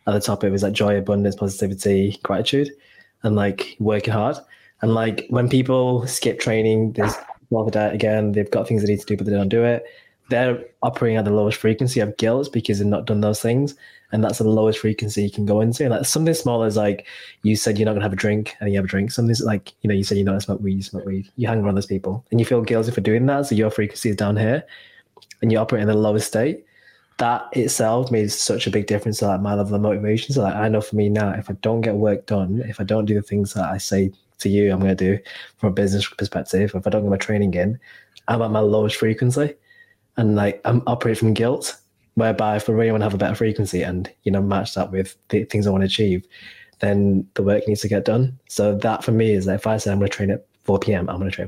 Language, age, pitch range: English, 20-39, 100-115 Hz